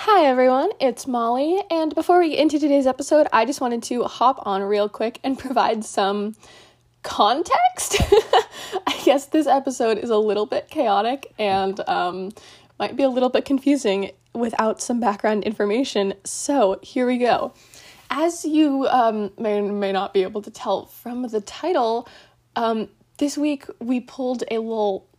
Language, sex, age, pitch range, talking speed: English, female, 10-29, 210-285 Hz, 165 wpm